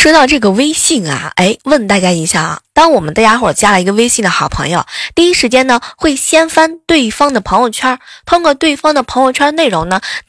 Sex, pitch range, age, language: female, 195-310 Hz, 20-39, Chinese